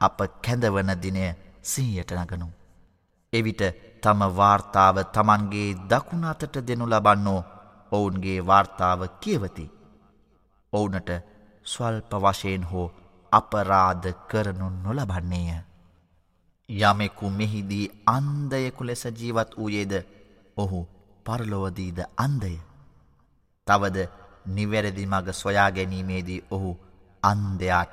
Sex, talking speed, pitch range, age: male, 40 wpm, 90-105 Hz, 30-49